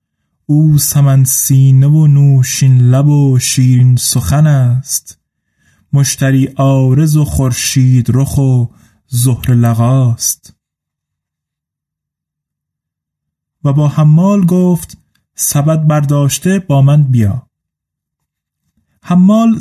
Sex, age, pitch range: male, 20-39, 130-155 Hz